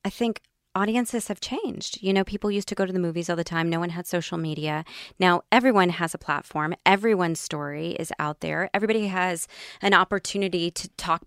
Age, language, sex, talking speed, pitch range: 20-39, English, female, 200 wpm, 170-215 Hz